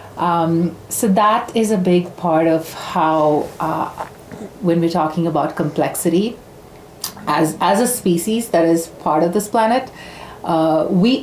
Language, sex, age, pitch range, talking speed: English, female, 30-49, 155-190 Hz, 145 wpm